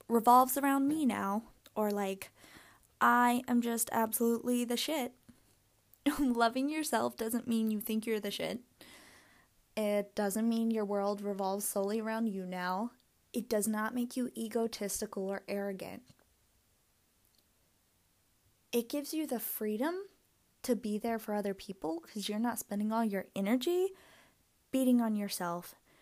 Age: 20-39